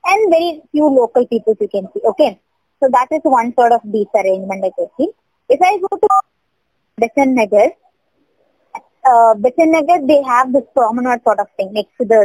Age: 20-39